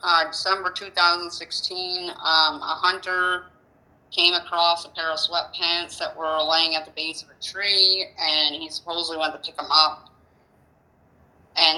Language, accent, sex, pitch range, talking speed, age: English, American, female, 155-180 Hz, 155 wpm, 30-49